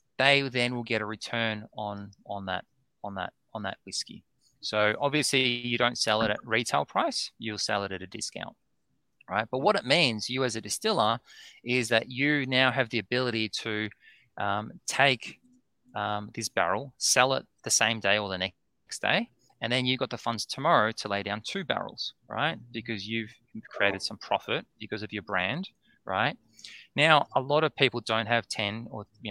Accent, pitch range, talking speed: Australian, 105-125 Hz, 190 wpm